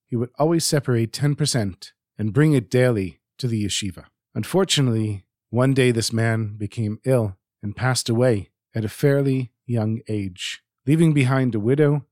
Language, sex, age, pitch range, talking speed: English, male, 40-59, 110-140 Hz, 155 wpm